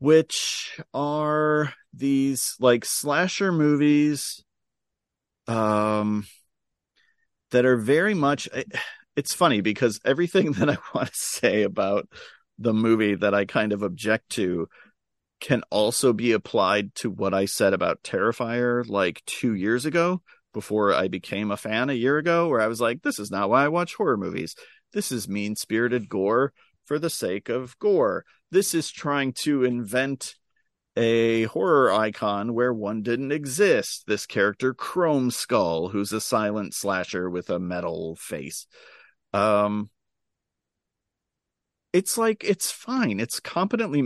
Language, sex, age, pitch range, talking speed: English, male, 40-59, 105-150 Hz, 140 wpm